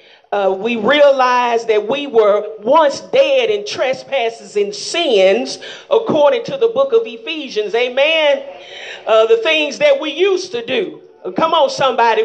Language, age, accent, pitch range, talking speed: English, 40-59, American, 245-410 Hz, 145 wpm